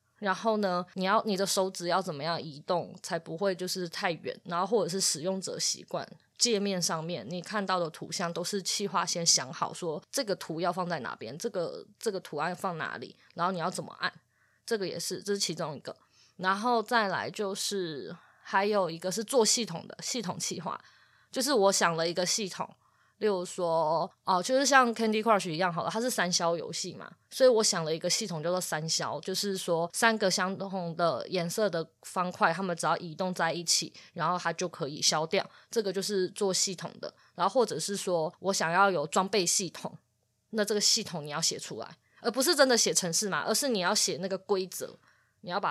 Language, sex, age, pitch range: Chinese, female, 20-39, 170-210 Hz